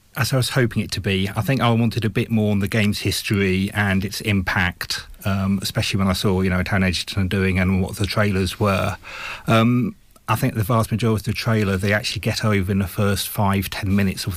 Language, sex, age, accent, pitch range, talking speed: English, male, 30-49, British, 100-115 Hz, 235 wpm